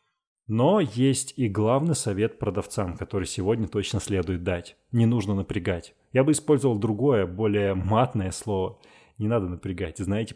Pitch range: 95-115 Hz